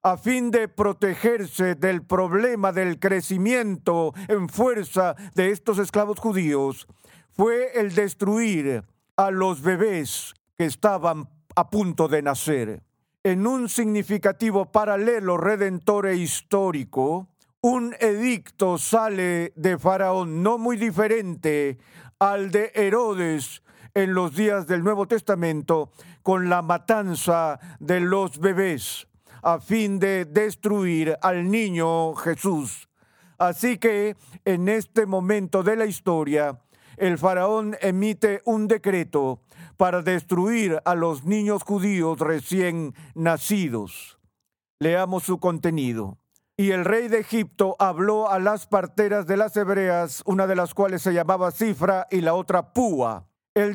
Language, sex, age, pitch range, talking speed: English, male, 50-69, 170-210 Hz, 125 wpm